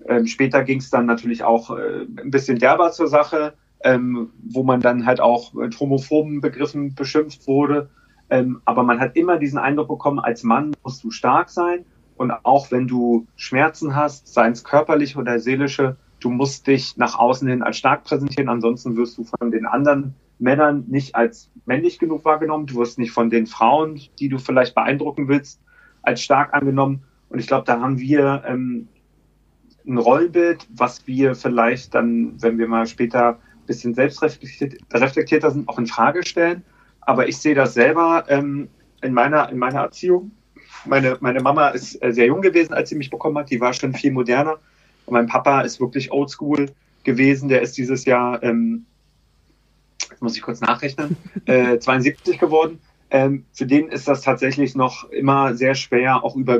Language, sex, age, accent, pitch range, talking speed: German, male, 30-49, German, 120-145 Hz, 175 wpm